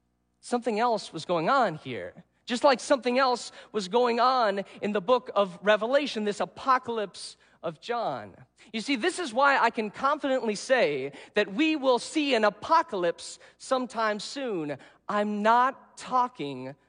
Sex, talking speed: male, 150 wpm